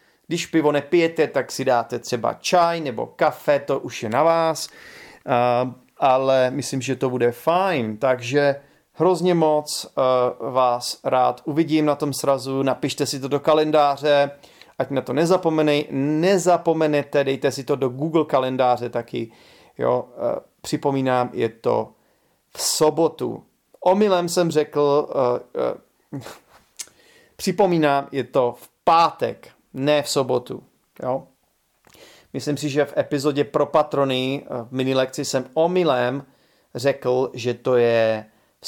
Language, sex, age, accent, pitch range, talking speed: Czech, male, 40-59, native, 125-155 Hz, 125 wpm